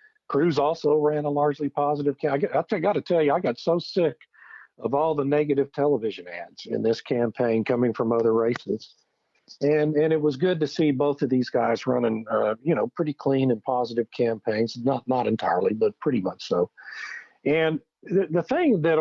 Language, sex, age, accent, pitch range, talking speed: English, male, 50-69, American, 120-155 Hz, 200 wpm